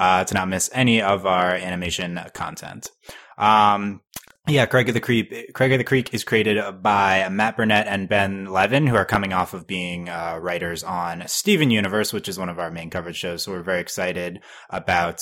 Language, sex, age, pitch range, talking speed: English, male, 20-39, 90-115 Hz, 200 wpm